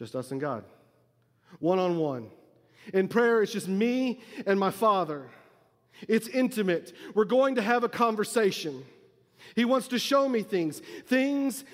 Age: 40-59